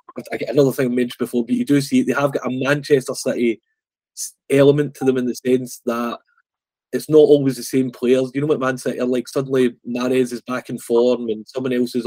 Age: 20-39